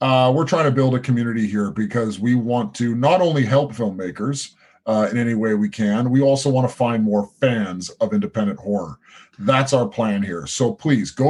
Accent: American